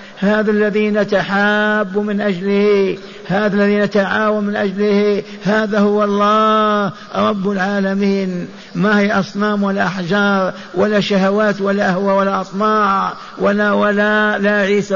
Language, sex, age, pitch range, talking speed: Arabic, male, 60-79, 170-205 Hz, 120 wpm